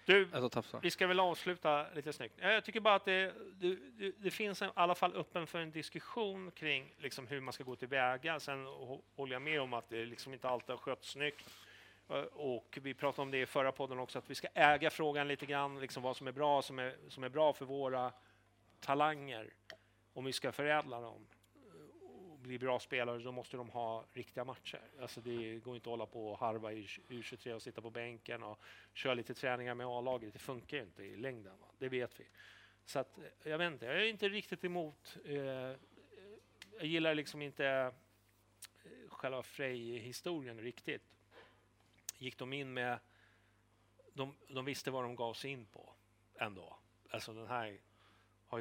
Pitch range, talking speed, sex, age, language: 115-150 Hz, 175 wpm, male, 30-49, English